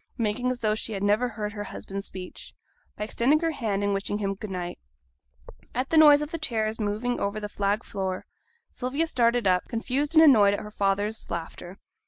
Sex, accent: female, American